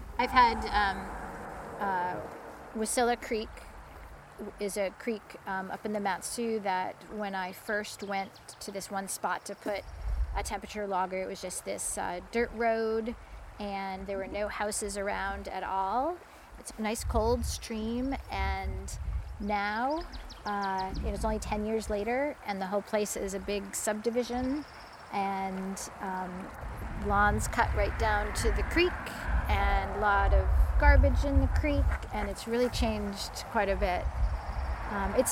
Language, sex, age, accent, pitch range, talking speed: English, female, 30-49, American, 180-220 Hz, 155 wpm